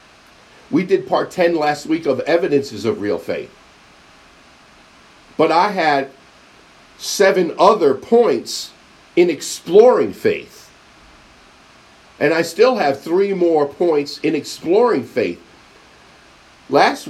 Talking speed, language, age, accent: 110 wpm, English, 50-69, American